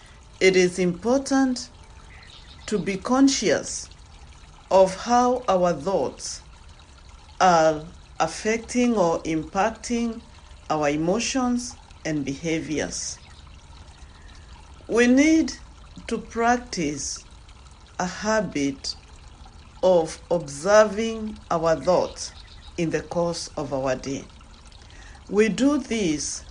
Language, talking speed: English, 85 wpm